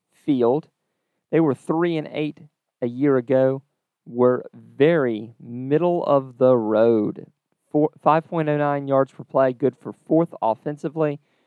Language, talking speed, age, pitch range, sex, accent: English, 125 wpm, 40-59, 120-155 Hz, male, American